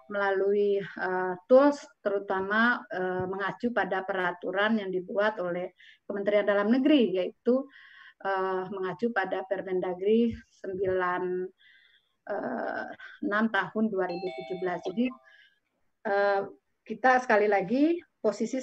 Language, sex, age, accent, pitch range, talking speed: Indonesian, female, 30-49, native, 190-240 Hz, 90 wpm